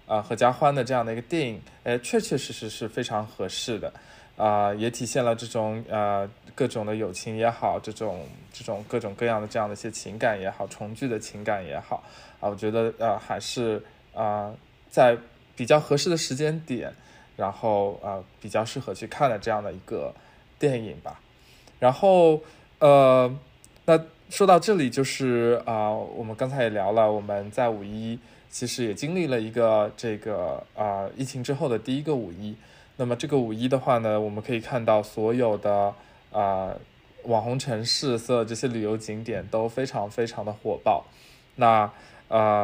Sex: male